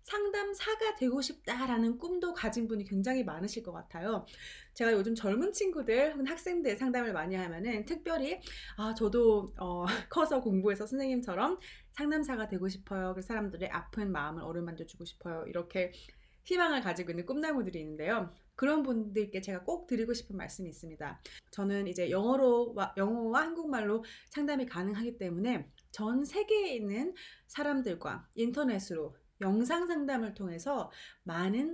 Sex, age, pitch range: female, 30-49, 195-280 Hz